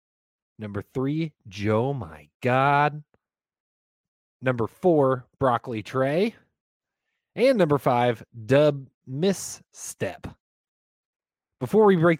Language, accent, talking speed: English, American, 85 wpm